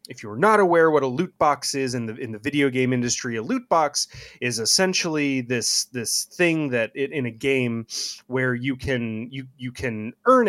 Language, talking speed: English, 205 wpm